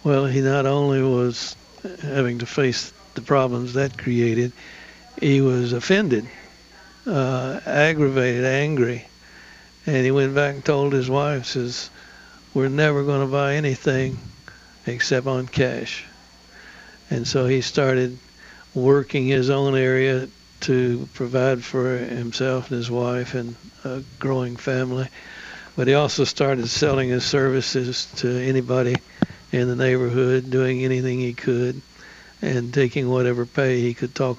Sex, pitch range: male, 125-135 Hz